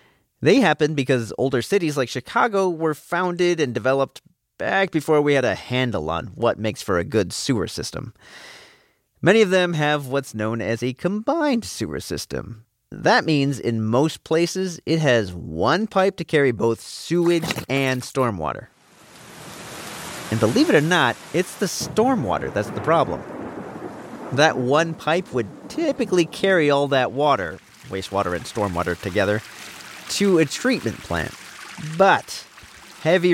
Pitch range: 125-180 Hz